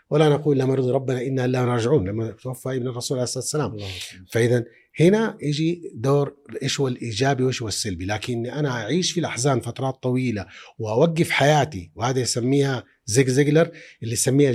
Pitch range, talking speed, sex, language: 115-150 Hz, 160 wpm, male, Arabic